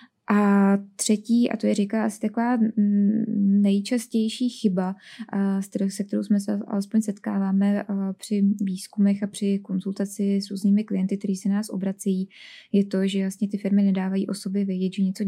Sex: female